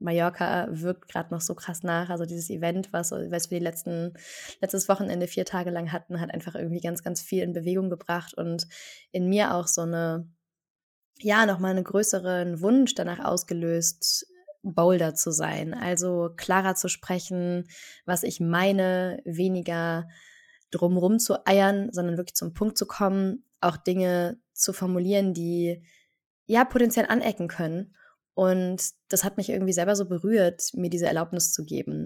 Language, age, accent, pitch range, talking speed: German, 20-39, German, 175-200 Hz, 160 wpm